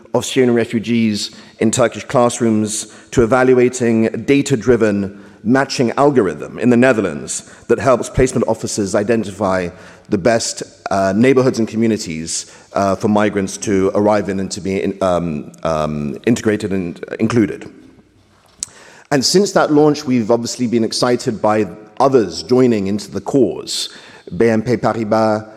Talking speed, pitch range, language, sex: 130 wpm, 105-125 Hz, French, male